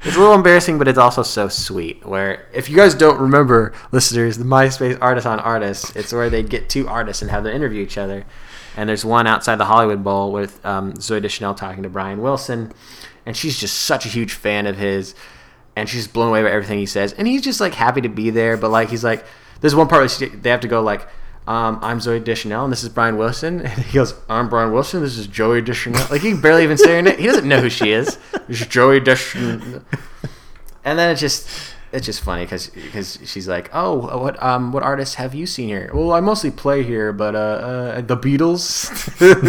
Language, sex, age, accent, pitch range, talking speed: English, male, 20-39, American, 105-140 Hz, 230 wpm